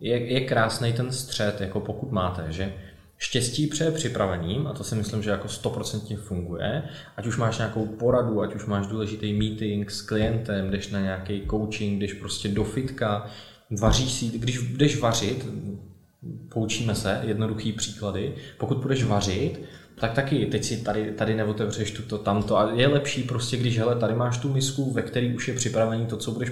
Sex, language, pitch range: male, Czech, 105-125 Hz